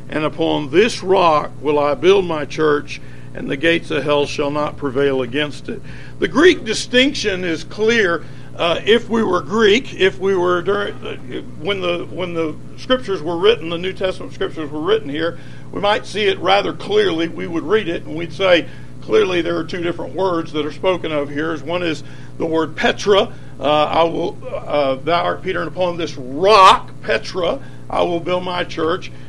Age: 60-79